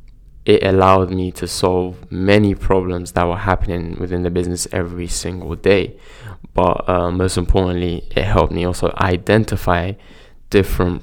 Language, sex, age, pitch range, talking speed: English, male, 10-29, 90-100 Hz, 140 wpm